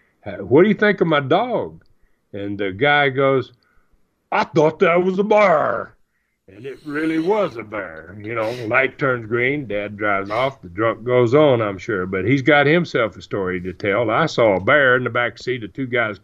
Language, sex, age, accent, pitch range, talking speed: English, male, 50-69, American, 120-160 Hz, 205 wpm